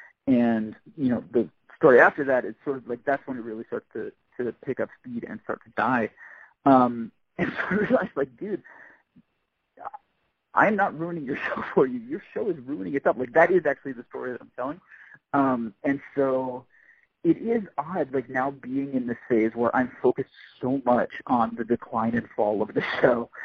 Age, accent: 40-59, American